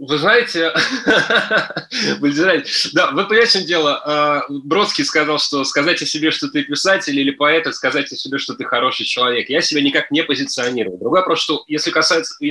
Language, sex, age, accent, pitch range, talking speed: Russian, male, 20-39, native, 130-170 Hz, 175 wpm